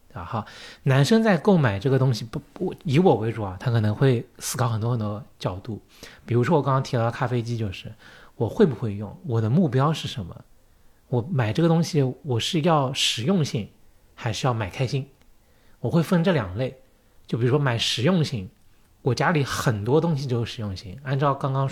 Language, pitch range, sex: Chinese, 110-145 Hz, male